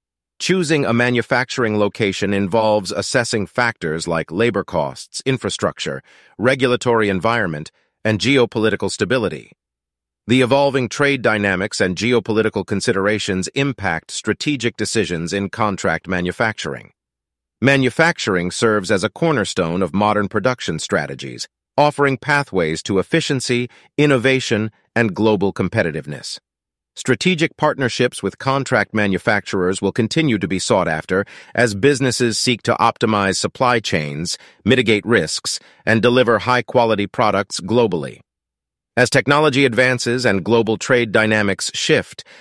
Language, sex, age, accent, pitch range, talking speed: English, male, 40-59, American, 95-125 Hz, 110 wpm